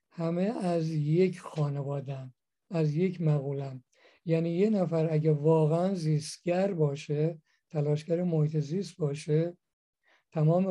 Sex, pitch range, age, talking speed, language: male, 150-175 Hz, 50-69, 105 wpm, Persian